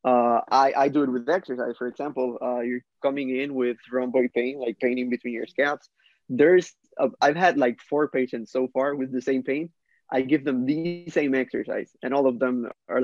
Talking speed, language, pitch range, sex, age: 210 wpm, English, 125-155 Hz, male, 20-39